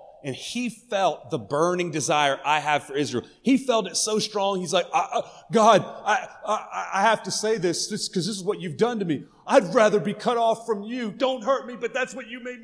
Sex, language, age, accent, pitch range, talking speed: male, English, 30-49, American, 205-260 Hz, 240 wpm